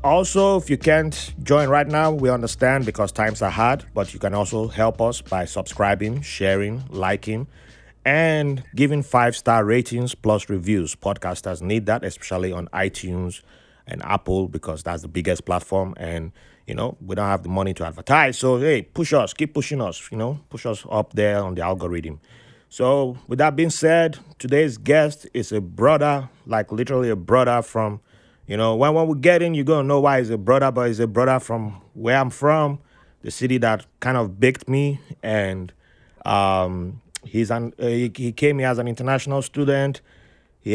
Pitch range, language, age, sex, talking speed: 100-135 Hz, English, 30-49, male, 190 wpm